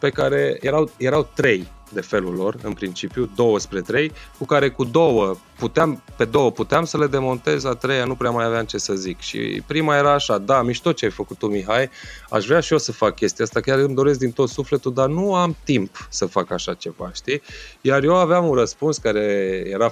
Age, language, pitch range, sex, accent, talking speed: 20-39, Romanian, 105-140 Hz, male, native, 225 wpm